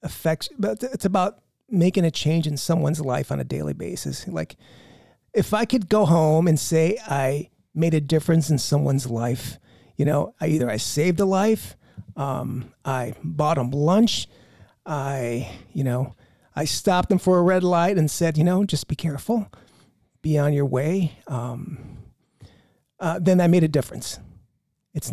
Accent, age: American, 30-49